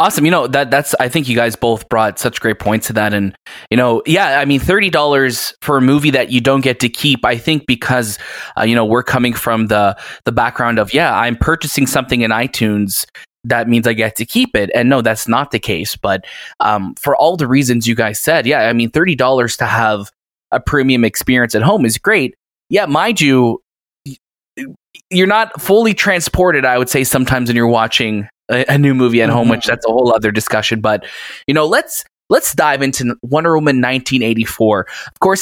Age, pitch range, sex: 20-39, 115-150 Hz, male